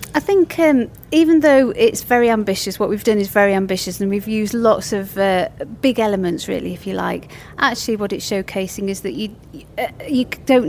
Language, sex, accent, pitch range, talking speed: English, female, British, 200-235 Hz, 200 wpm